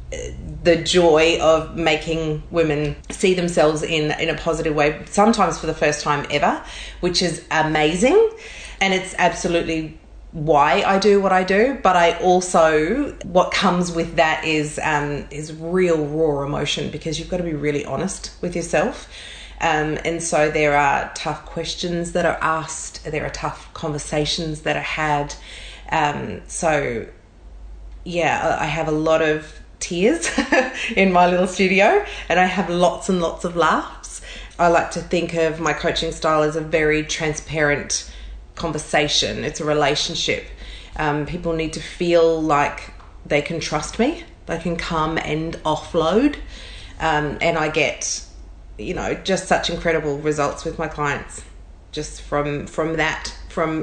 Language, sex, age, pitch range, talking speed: English, female, 30-49, 150-175 Hz, 155 wpm